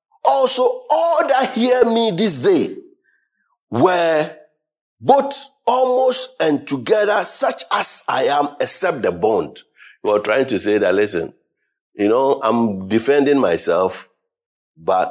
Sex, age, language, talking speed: male, 50-69, English, 125 wpm